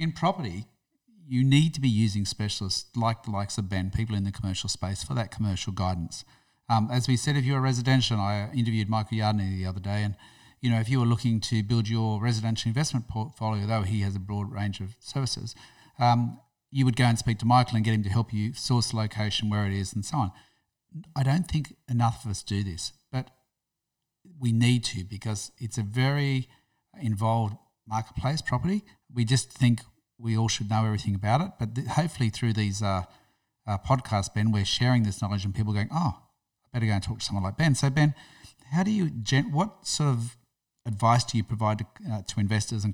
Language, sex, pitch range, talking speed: English, male, 105-125 Hz, 215 wpm